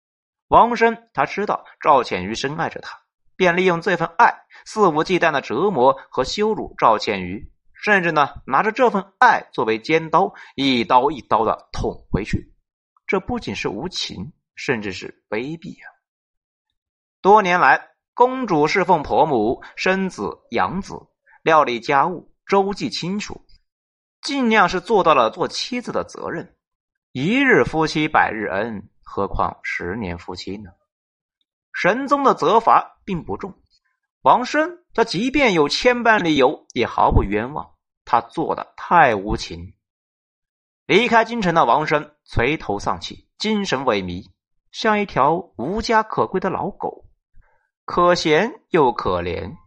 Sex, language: male, Chinese